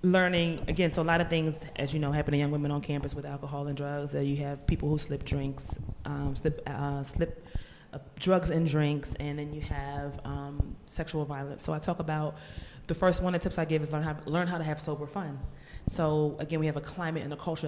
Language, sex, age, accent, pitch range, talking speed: English, female, 20-39, American, 145-170 Hz, 240 wpm